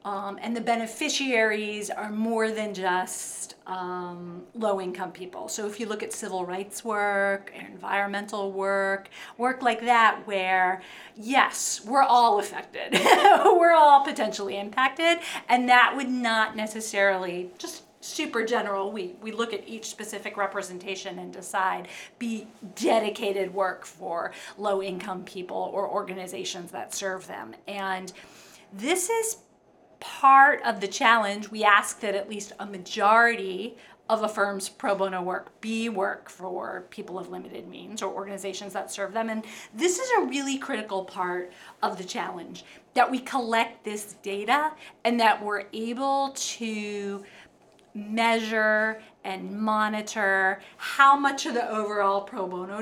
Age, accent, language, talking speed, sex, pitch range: 40-59, American, English, 140 wpm, female, 195-230 Hz